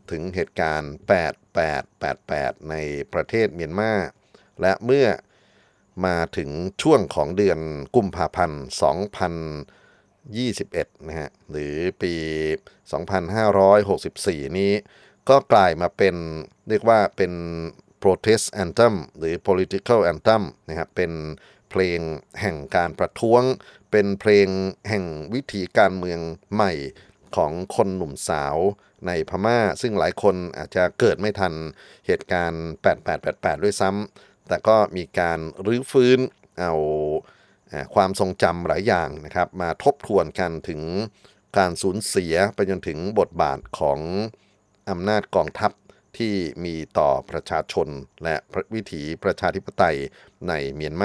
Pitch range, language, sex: 80-105 Hz, Thai, male